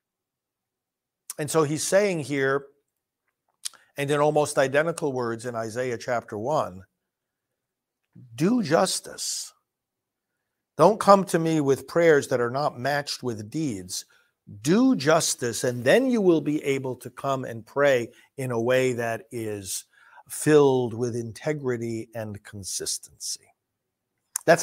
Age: 50-69